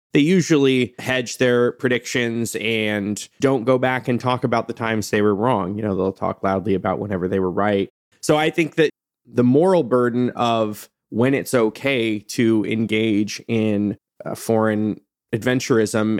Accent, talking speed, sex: American, 165 wpm, male